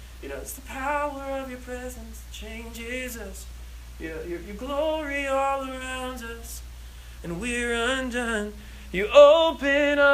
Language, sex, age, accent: English, male, 20-39, American